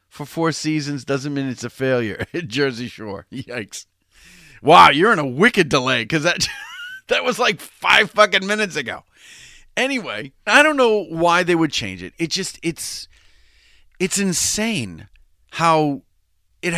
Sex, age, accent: male, 40-59, American